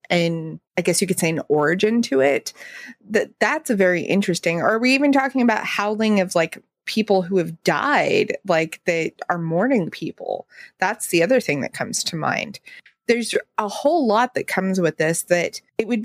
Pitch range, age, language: 170-230 Hz, 30-49, English